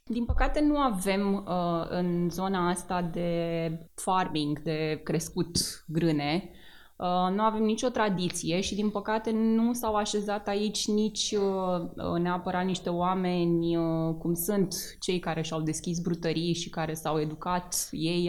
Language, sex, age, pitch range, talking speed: Romanian, female, 20-39, 165-210 Hz, 130 wpm